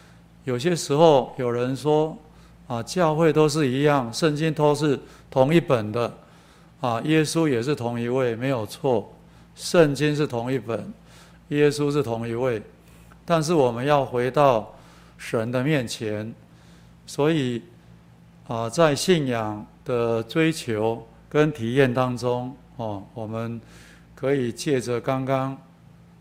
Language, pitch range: Chinese, 115-145 Hz